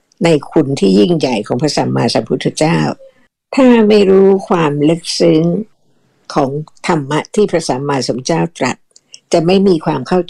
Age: 60-79